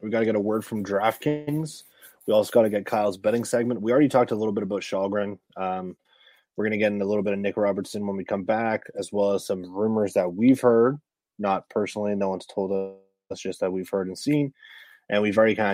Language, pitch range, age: English, 90-105 Hz, 20-39